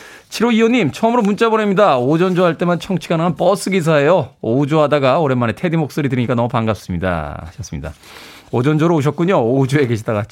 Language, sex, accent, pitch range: Korean, male, native, 130-205 Hz